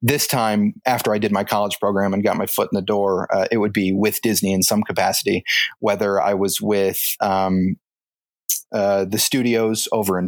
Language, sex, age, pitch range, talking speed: English, male, 30-49, 100-115 Hz, 200 wpm